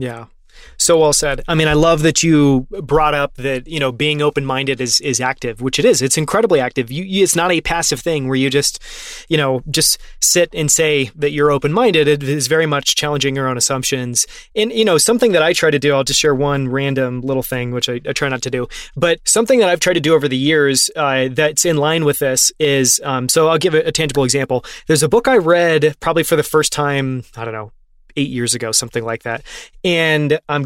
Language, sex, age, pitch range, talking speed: English, male, 20-39, 135-165 Hz, 235 wpm